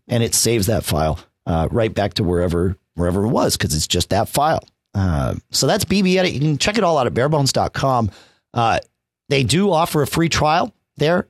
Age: 40-59